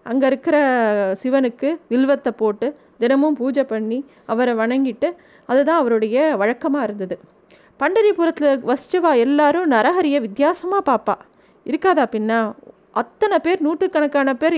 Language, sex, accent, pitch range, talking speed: Tamil, female, native, 235-310 Hz, 110 wpm